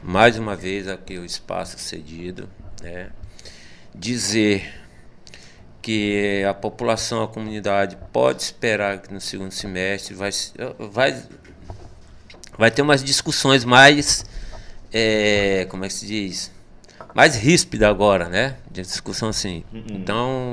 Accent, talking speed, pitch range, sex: Brazilian, 120 wpm, 100-125 Hz, male